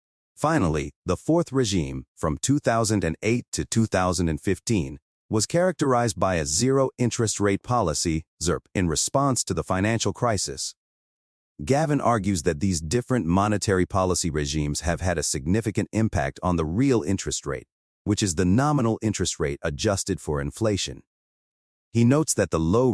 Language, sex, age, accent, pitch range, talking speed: English, male, 30-49, American, 80-115 Hz, 140 wpm